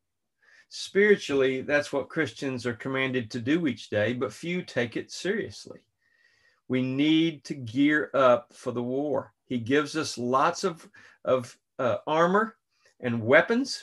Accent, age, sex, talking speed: American, 40-59, male, 145 wpm